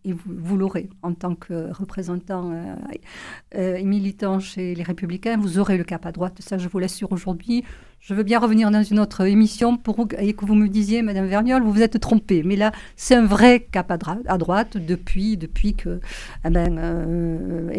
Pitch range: 170-205 Hz